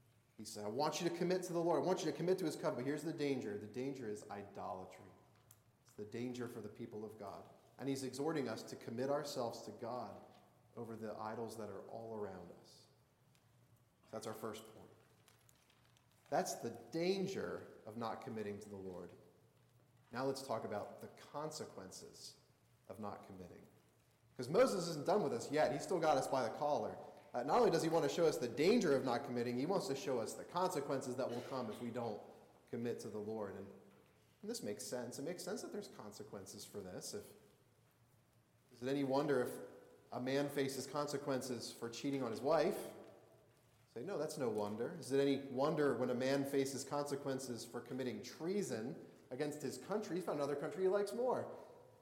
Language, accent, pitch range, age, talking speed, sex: English, American, 110-140 Hz, 30-49, 200 wpm, male